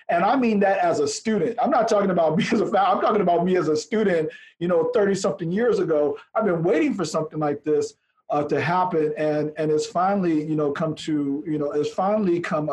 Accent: American